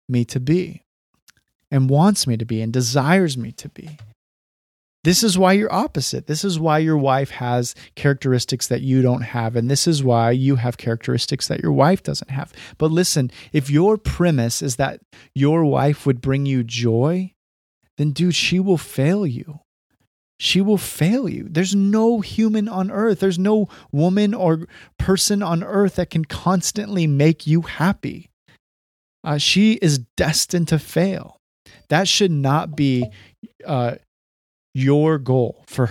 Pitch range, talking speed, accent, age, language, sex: 130-175 Hz, 160 wpm, American, 30-49, English, male